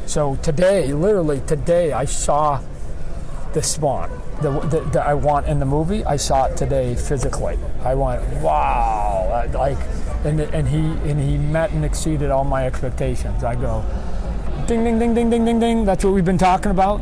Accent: American